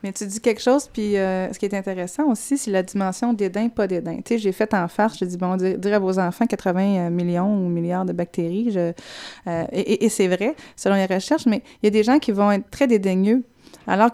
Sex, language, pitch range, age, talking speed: female, French, 185-230 Hz, 30-49, 255 wpm